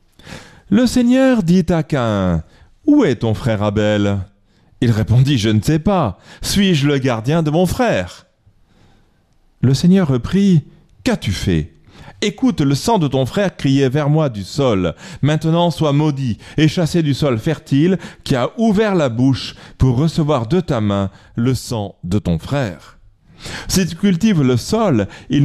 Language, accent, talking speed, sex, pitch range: French, French, 160 wpm, male, 110-170 Hz